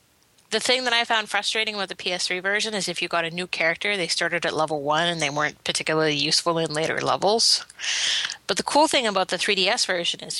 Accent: American